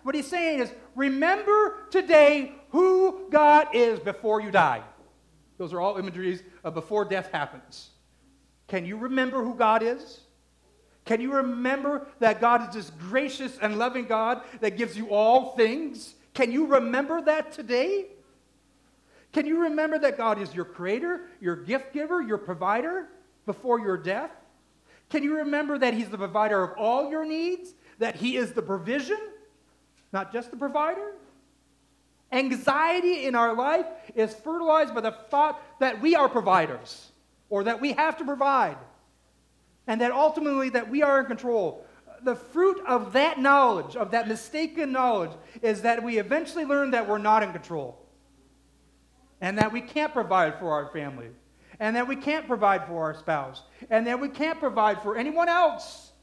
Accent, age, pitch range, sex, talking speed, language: American, 40-59, 215-305 Hz, male, 165 wpm, English